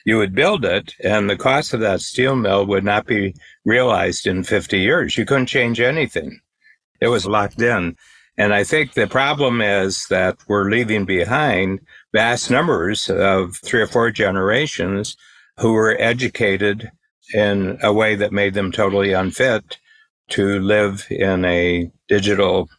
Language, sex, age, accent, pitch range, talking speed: English, male, 60-79, American, 95-115 Hz, 155 wpm